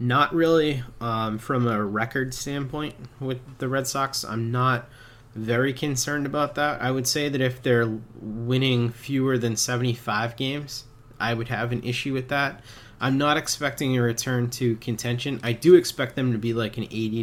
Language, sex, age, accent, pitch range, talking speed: English, male, 30-49, American, 110-125 Hz, 180 wpm